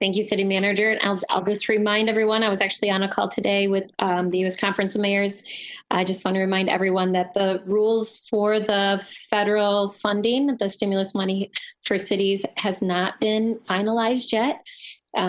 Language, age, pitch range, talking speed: English, 20-39, 185-215 Hz, 185 wpm